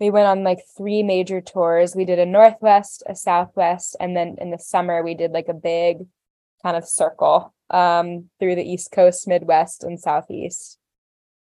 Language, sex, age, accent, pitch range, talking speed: English, female, 10-29, American, 175-215 Hz, 175 wpm